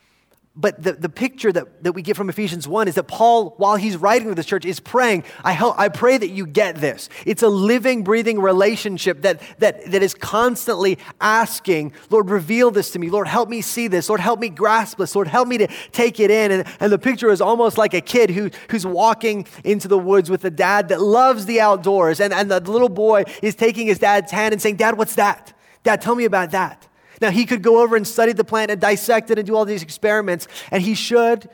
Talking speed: 240 wpm